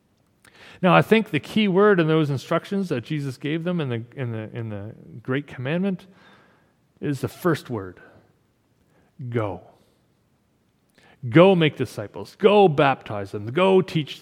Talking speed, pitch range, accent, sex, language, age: 145 wpm, 130-170 Hz, American, male, English, 40-59